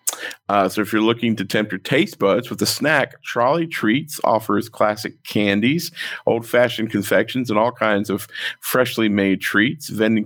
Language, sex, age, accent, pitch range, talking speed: English, male, 50-69, American, 110-140 Hz, 165 wpm